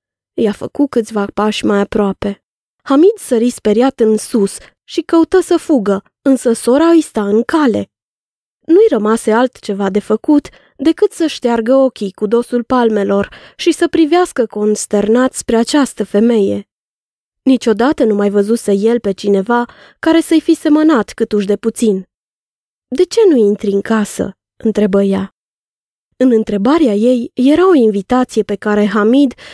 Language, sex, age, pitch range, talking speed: Romanian, female, 20-39, 205-280 Hz, 145 wpm